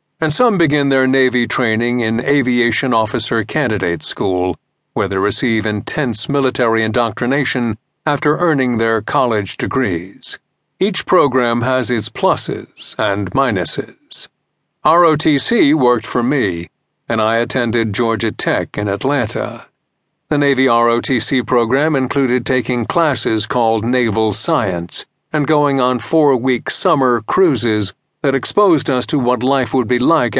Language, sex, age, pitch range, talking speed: English, male, 50-69, 115-140 Hz, 130 wpm